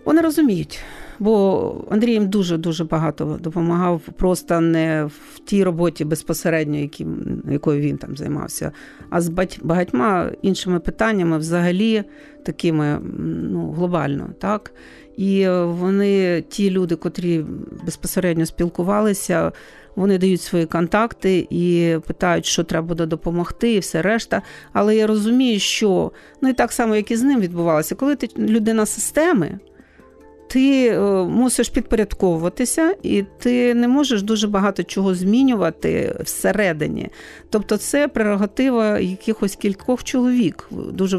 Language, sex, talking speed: Ukrainian, female, 125 wpm